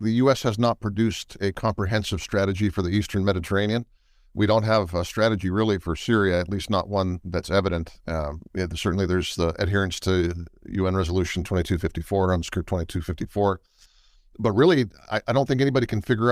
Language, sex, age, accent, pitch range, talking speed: Turkish, male, 50-69, American, 95-110 Hz, 170 wpm